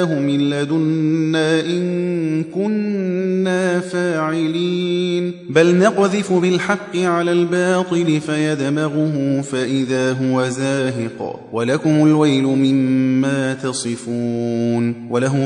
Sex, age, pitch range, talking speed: male, 30-49, 130-165 Hz, 80 wpm